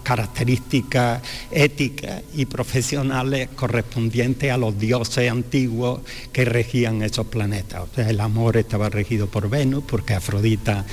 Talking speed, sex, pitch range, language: 125 wpm, male, 110-125 Hz, Spanish